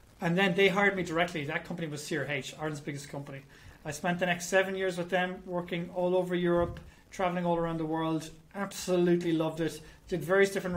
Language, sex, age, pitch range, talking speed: English, male, 30-49, 155-185 Hz, 200 wpm